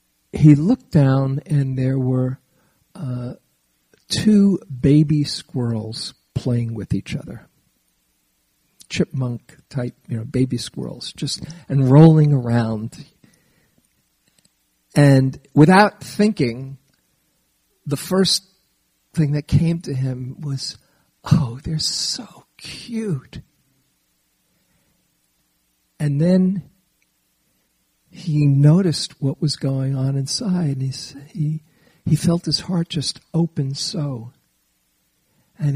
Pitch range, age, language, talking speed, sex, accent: 120-155 Hz, 50-69, English, 95 wpm, male, American